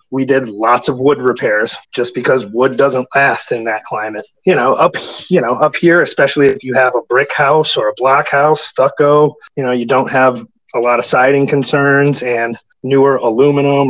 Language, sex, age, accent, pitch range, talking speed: English, male, 30-49, American, 130-150 Hz, 200 wpm